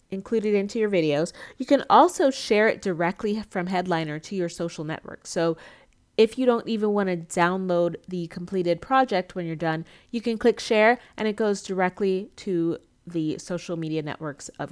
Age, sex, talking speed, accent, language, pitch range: 30-49, female, 180 wpm, American, English, 180-230 Hz